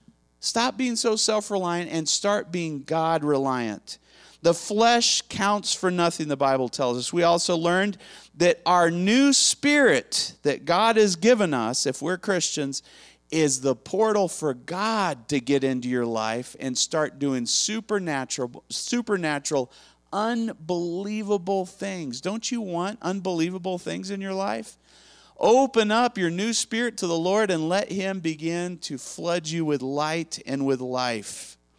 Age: 40-59